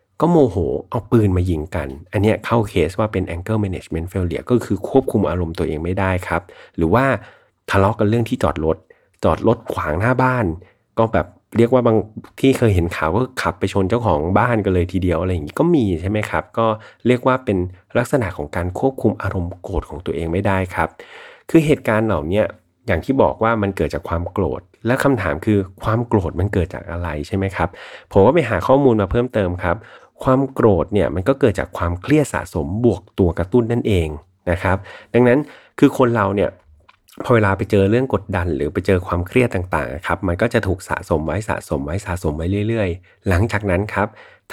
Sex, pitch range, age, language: male, 90-115 Hz, 30-49, Thai